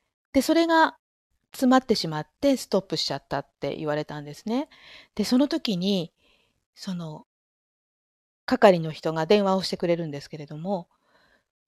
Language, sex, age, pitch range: Japanese, female, 50-69, 160-220 Hz